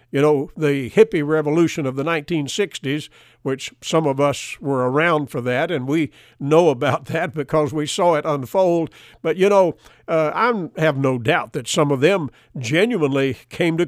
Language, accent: English, American